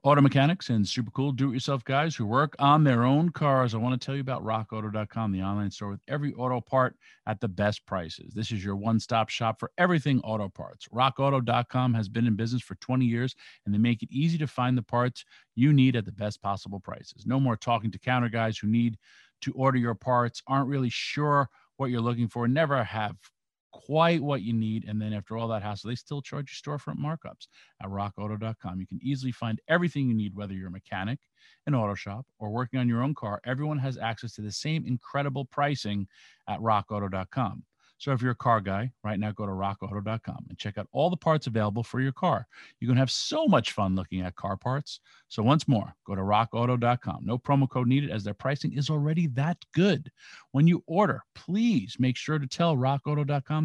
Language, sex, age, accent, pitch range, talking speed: English, male, 50-69, American, 105-140 Hz, 215 wpm